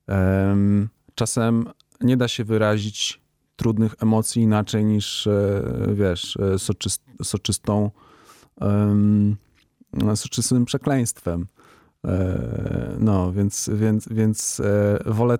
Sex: male